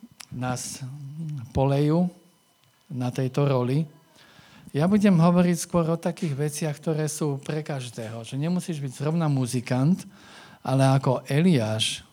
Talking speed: 120 wpm